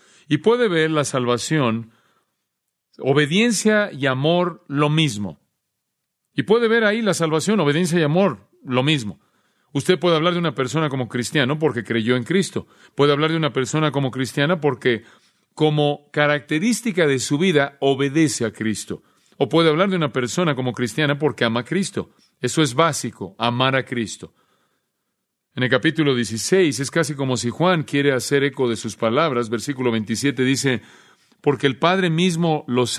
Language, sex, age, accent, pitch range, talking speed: Spanish, male, 40-59, Mexican, 125-160 Hz, 165 wpm